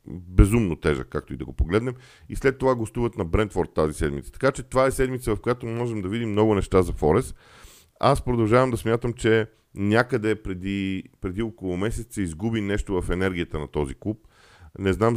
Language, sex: Bulgarian, male